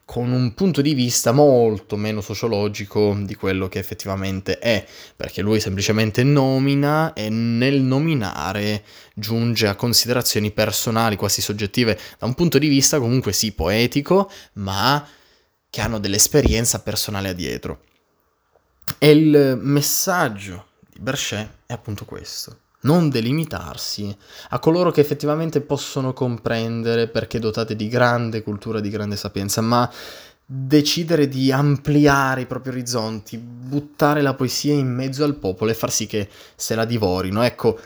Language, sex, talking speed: Italian, male, 135 wpm